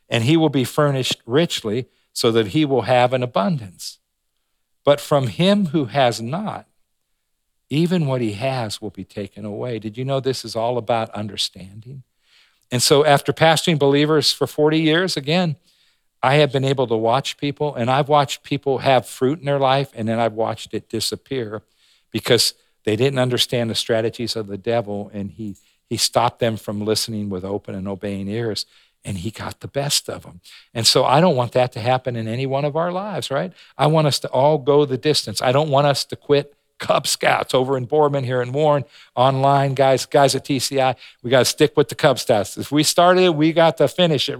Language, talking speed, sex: English, 205 wpm, male